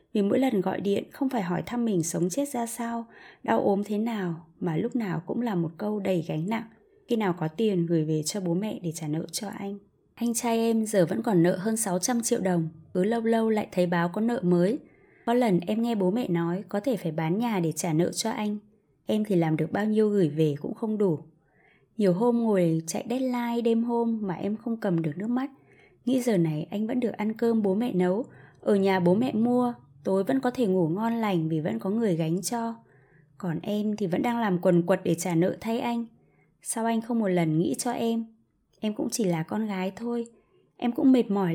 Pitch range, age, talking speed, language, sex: 175-235 Hz, 20-39, 240 wpm, Vietnamese, female